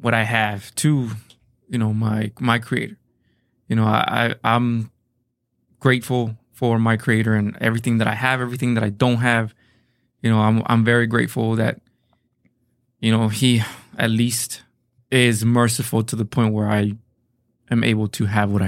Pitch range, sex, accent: 115-125 Hz, male, American